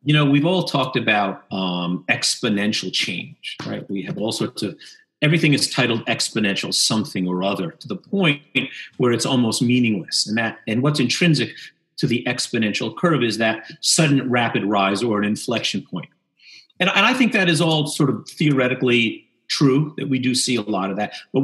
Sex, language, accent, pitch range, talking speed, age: male, English, American, 110-145 Hz, 195 wpm, 40-59